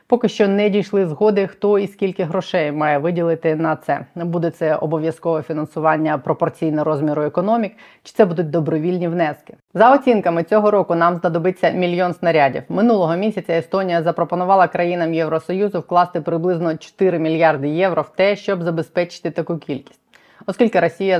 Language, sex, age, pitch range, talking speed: Ukrainian, female, 20-39, 155-185 Hz, 145 wpm